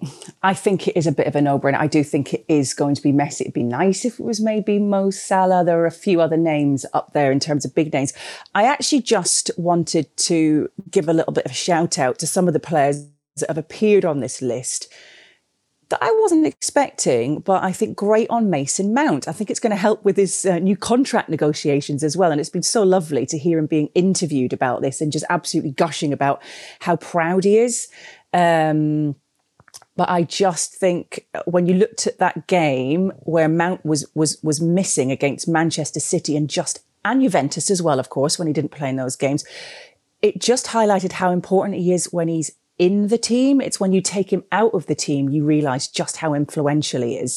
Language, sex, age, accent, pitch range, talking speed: English, female, 30-49, British, 150-195 Hz, 220 wpm